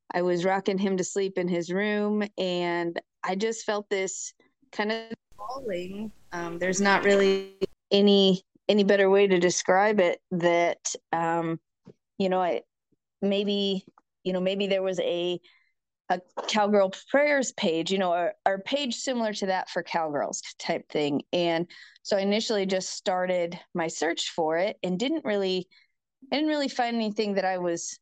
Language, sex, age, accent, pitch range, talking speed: English, female, 20-39, American, 180-225 Hz, 165 wpm